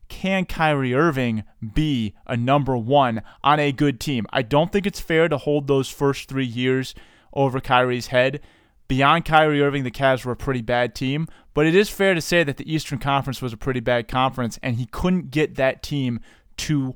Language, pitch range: English, 125-155 Hz